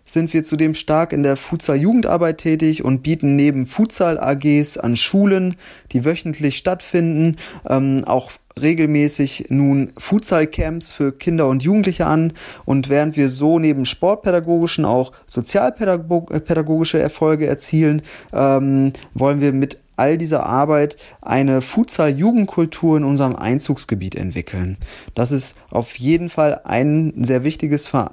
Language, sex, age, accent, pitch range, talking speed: German, male, 30-49, German, 135-170 Hz, 125 wpm